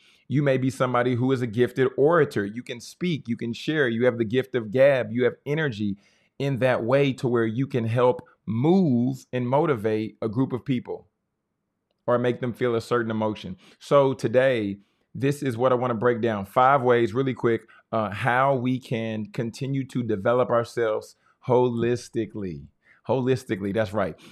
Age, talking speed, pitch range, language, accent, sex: 30-49, 180 wpm, 115-140 Hz, English, American, male